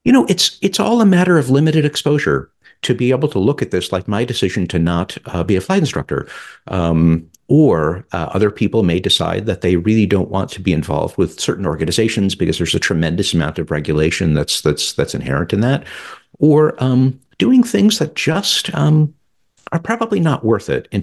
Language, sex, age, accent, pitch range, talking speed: English, male, 50-69, American, 80-130 Hz, 205 wpm